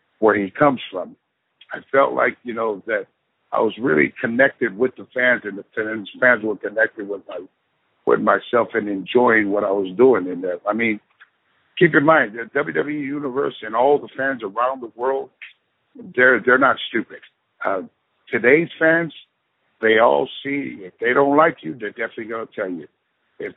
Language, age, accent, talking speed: English, 60-79, American, 180 wpm